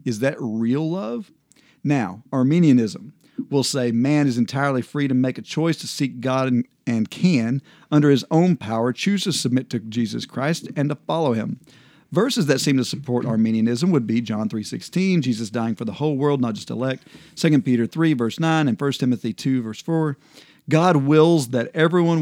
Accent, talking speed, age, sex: American, 190 wpm, 50-69, male